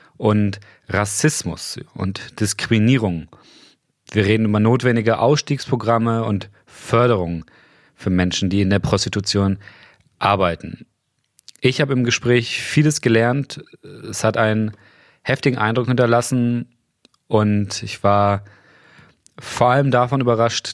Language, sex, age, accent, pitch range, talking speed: German, male, 40-59, German, 95-120 Hz, 105 wpm